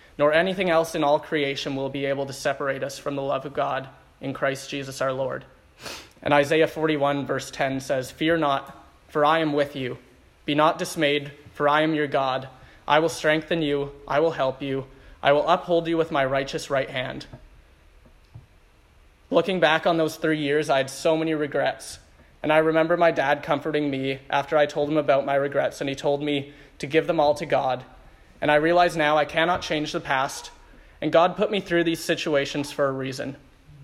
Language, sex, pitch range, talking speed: English, male, 135-160 Hz, 200 wpm